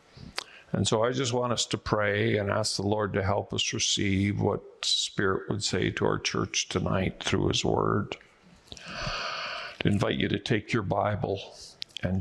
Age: 50-69